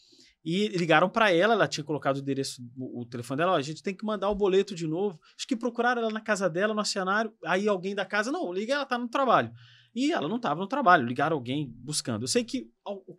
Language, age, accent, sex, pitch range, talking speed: Portuguese, 20-39, Brazilian, male, 155-210 Hz, 245 wpm